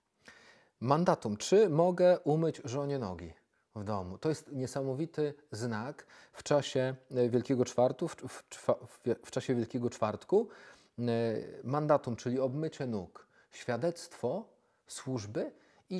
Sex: male